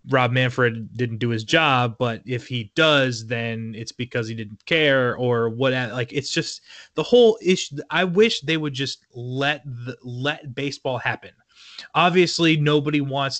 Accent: American